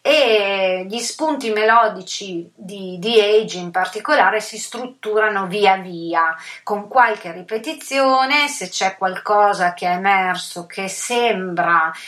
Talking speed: 120 wpm